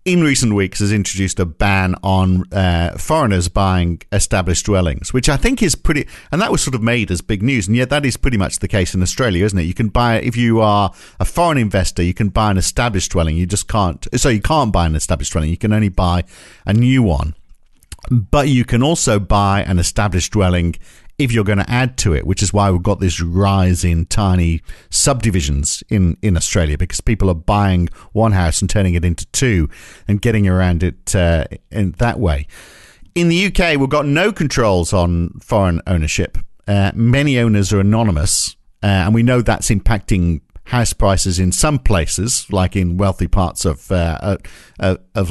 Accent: British